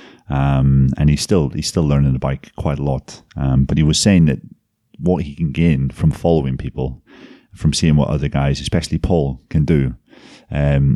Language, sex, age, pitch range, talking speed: English, male, 30-49, 75-90 Hz, 205 wpm